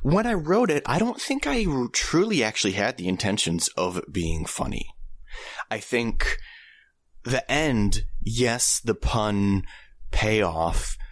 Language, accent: English, American